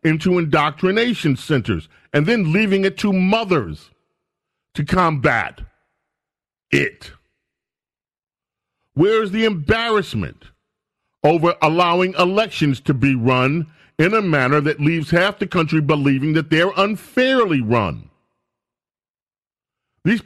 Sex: male